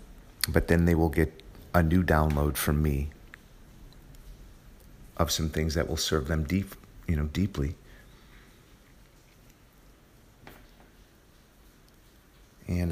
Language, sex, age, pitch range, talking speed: English, male, 40-59, 75-95 Hz, 100 wpm